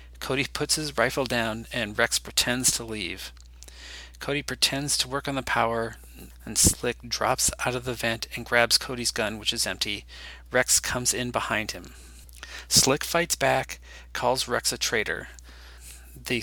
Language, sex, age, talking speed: English, male, 40-59, 160 wpm